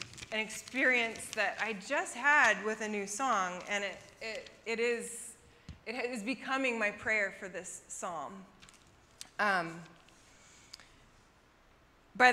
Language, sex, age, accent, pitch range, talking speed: English, female, 20-39, American, 200-245 Hz, 120 wpm